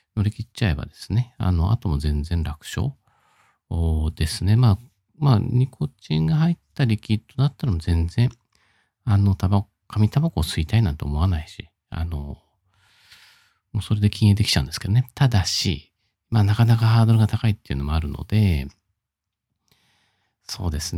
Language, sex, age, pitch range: Japanese, male, 50-69, 90-120 Hz